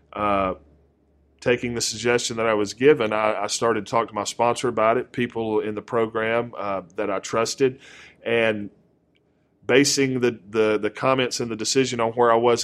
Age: 40-59